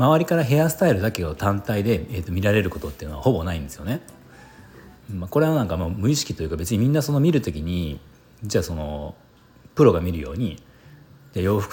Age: 40-59